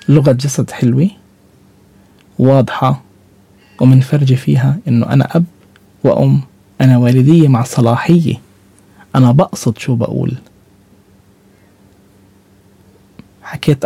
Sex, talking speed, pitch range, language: male, 80 wpm, 100-155 Hz, Arabic